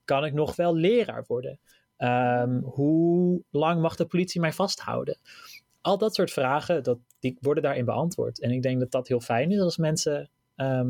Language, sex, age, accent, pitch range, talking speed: Dutch, male, 30-49, Dutch, 120-160 Hz, 170 wpm